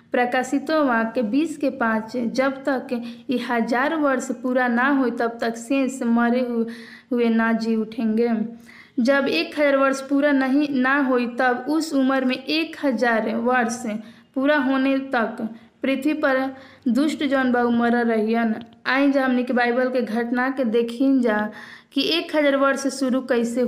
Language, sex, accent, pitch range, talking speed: Hindi, female, native, 235-270 Hz, 155 wpm